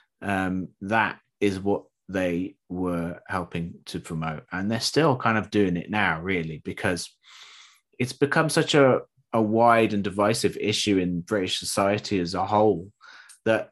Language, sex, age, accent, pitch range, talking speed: Italian, male, 30-49, British, 90-115 Hz, 155 wpm